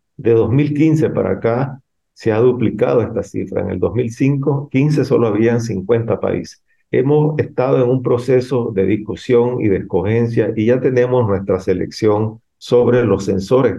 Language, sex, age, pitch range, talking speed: Spanish, male, 50-69, 100-125 Hz, 150 wpm